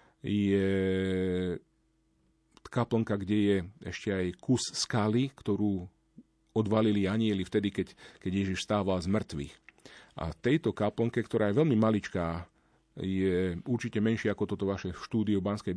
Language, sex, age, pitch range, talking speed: Slovak, male, 40-59, 95-115 Hz, 125 wpm